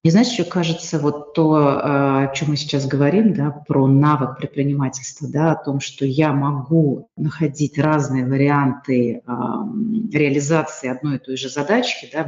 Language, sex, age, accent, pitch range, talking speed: Russian, female, 30-49, native, 145-210 Hz, 155 wpm